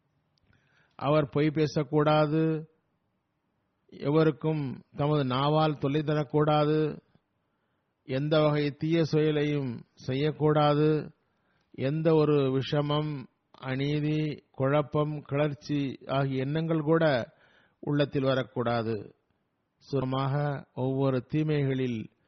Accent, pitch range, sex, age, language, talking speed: native, 130-155 Hz, male, 50-69, Tamil, 75 wpm